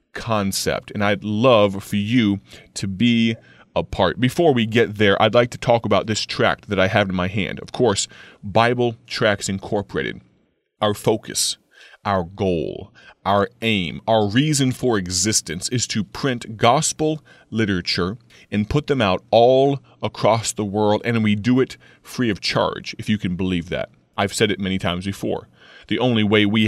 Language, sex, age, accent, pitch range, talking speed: English, male, 30-49, American, 100-125 Hz, 175 wpm